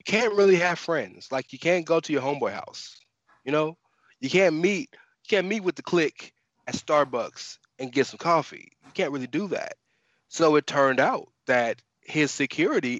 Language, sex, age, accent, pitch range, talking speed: English, male, 20-39, American, 120-145 Hz, 195 wpm